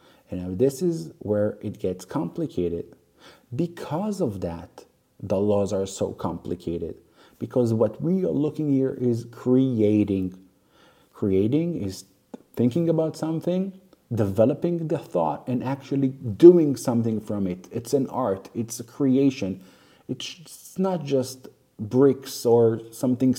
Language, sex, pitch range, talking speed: English, male, 105-140 Hz, 125 wpm